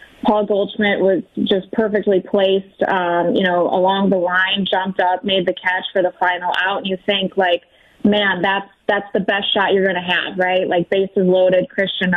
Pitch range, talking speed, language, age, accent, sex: 190-215 Hz, 195 wpm, English, 20-39, American, female